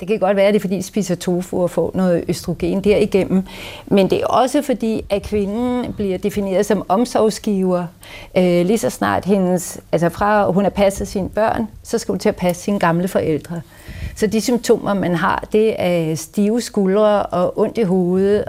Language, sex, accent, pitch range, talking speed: Danish, female, native, 175-215 Hz, 195 wpm